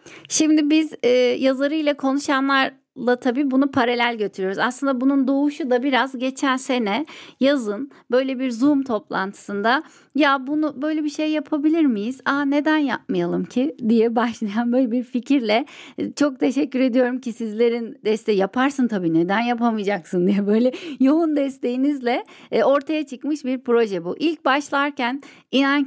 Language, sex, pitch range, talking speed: Turkish, female, 220-280 Hz, 140 wpm